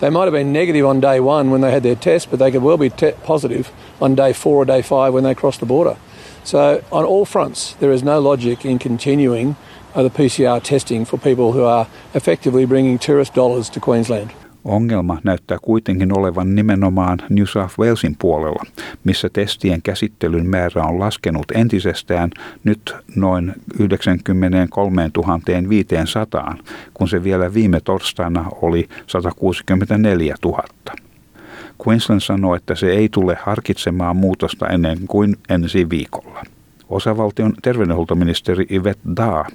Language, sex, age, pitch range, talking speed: Finnish, male, 60-79, 90-120 Hz, 145 wpm